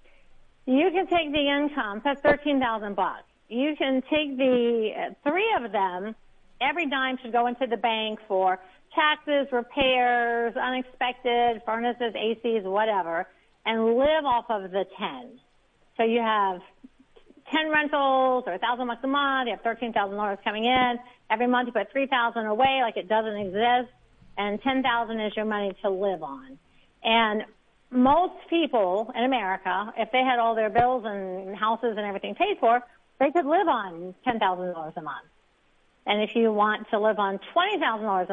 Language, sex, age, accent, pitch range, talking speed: English, female, 50-69, American, 215-270 Hz, 170 wpm